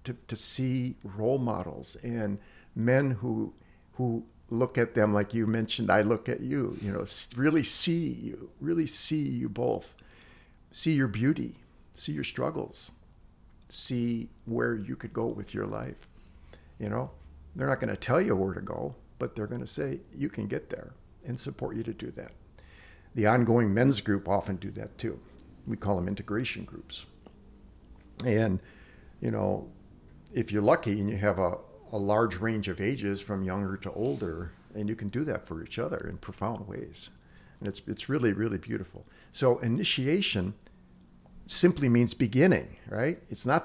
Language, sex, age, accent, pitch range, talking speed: English, male, 50-69, American, 100-120 Hz, 170 wpm